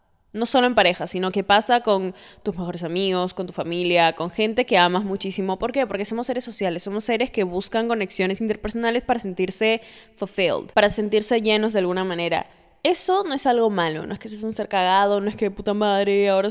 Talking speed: 210 wpm